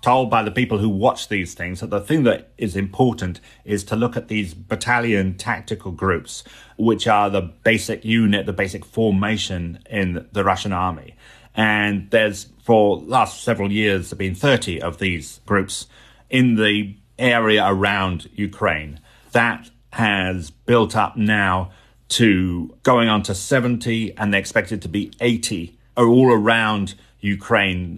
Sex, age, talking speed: male, 30-49, 155 wpm